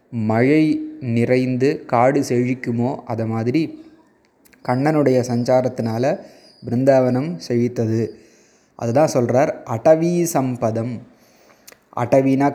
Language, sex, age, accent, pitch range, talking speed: Tamil, male, 20-39, native, 120-140 Hz, 65 wpm